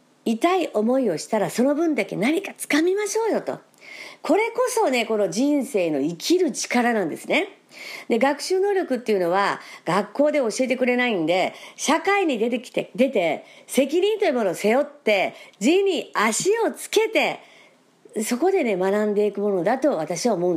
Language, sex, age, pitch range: Japanese, female, 50-69, 225-340 Hz